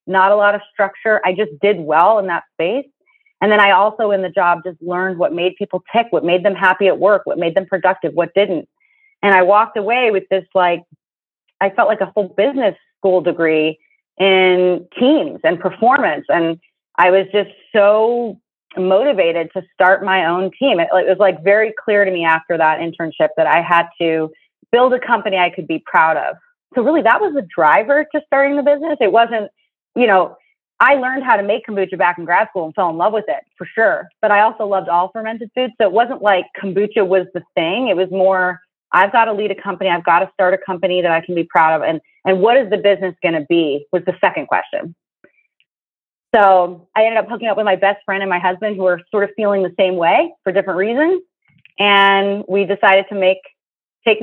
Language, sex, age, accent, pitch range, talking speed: English, female, 30-49, American, 185-225 Hz, 220 wpm